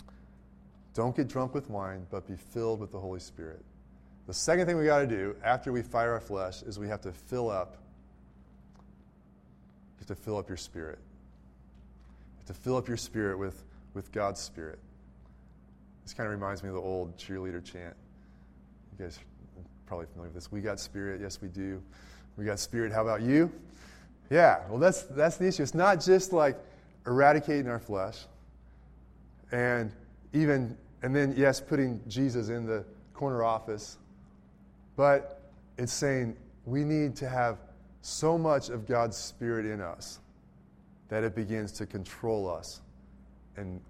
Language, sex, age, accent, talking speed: English, male, 20-39, American, 165 wpm